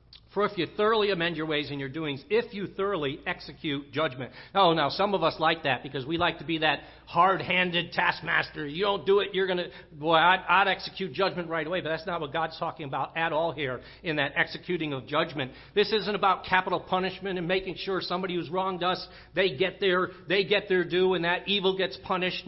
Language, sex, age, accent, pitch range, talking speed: English, male, 50-69, American, 165-205 Hz, 220 wpm